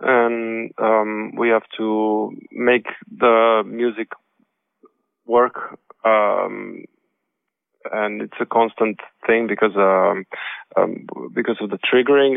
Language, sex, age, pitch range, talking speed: French, male, 20-39, 100-115 Hz, 105 wpm